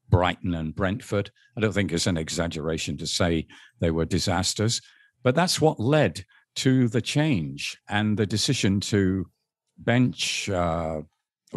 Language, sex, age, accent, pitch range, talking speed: English, male, 50-69, British, 95-125 Hz, 140 wpm